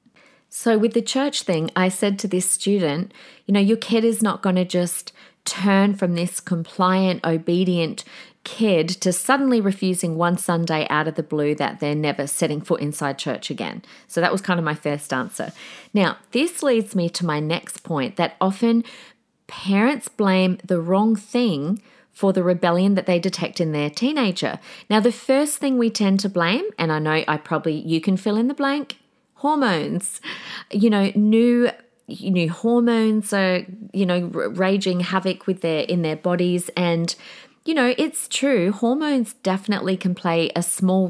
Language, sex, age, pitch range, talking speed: English, female, 40-59, 170-230 Hz, 175 wpm